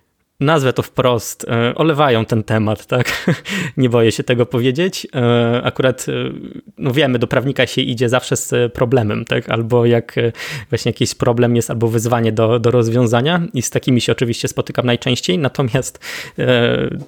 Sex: male